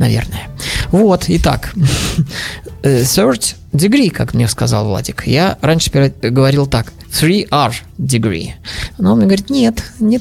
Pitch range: 115-155 Hz